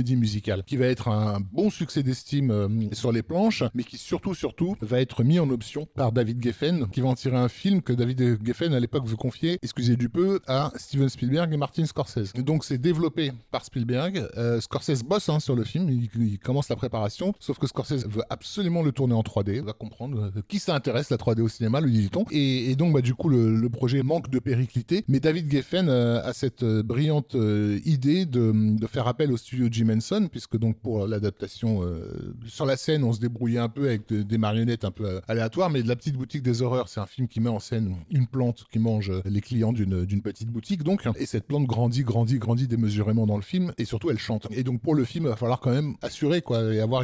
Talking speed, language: 240 wpm, French